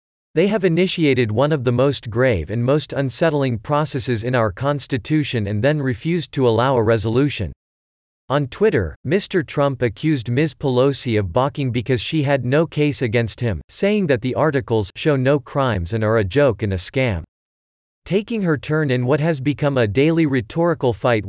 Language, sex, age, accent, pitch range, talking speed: English, male, 40-59, American, 115-150 Hz, 180 wpm